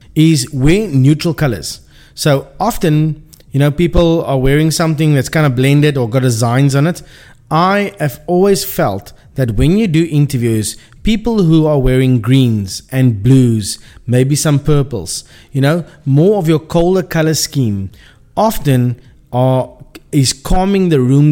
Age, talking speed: 30-49, 150 wpm